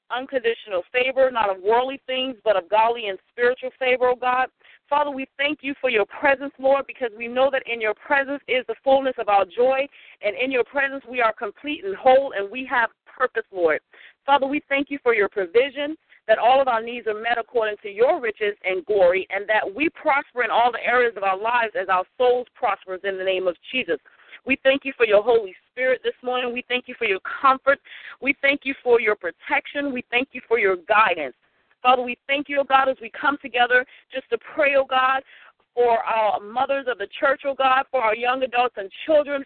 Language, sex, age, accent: English, female, 40-59, American